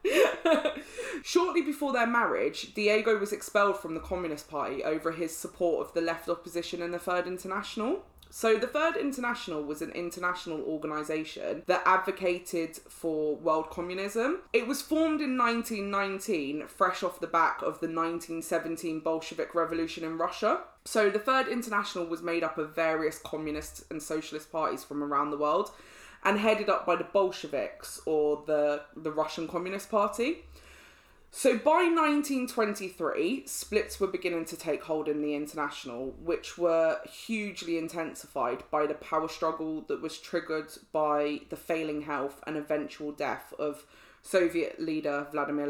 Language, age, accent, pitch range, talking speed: English, 20-39, British, 155-215 Hz, 150 wpm